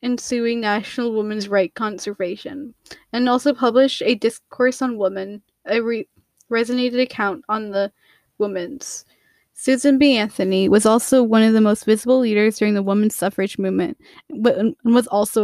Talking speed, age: 150 wpm, 10-29